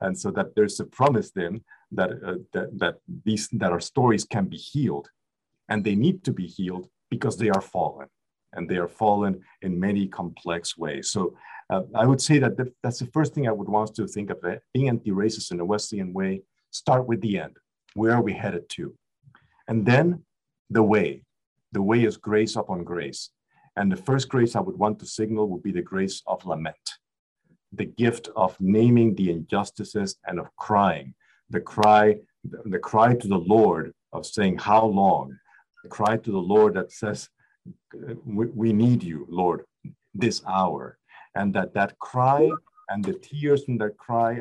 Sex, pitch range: male, 100-120 Hz